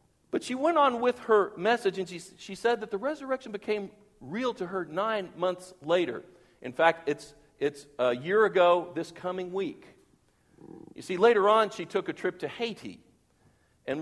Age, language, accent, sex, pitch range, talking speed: 50-69, English, American, male, 145-190 Hz, 180 wpm